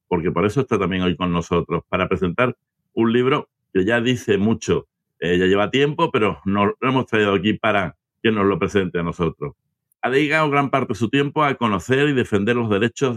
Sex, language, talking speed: male, Spanish, 210 wpm